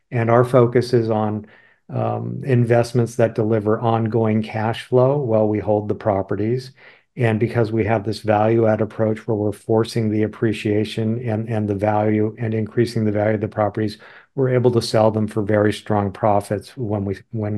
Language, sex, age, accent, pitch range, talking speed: English, male, 50-69, American, 110-120 Hz, 180 wpm